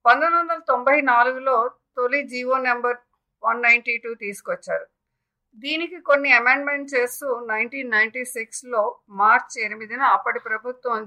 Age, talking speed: 50-69, 120 wpm